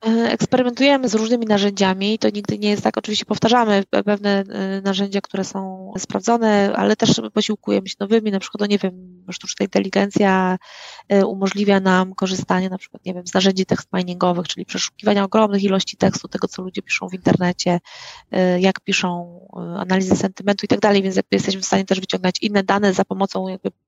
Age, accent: 20-39, native